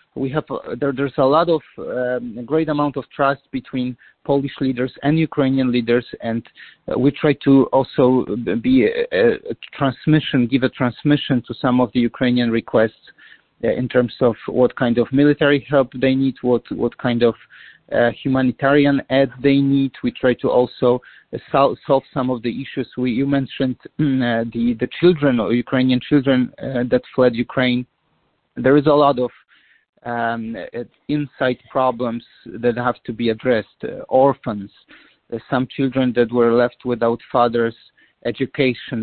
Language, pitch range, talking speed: English, 120-135 Hz, 165 wpm